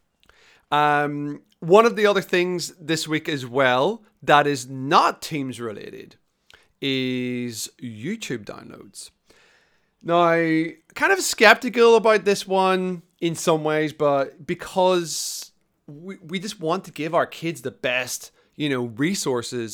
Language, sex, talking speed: English, male, 135 wpm